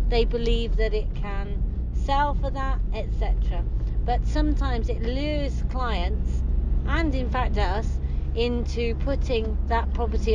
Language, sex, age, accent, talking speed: English, female, 40-59, British, 130 wpm